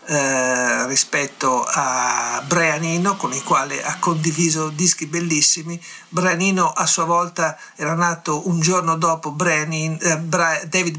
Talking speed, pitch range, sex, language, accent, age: 120 wpm, 150-175 Hz, male, Italian, native, 50-69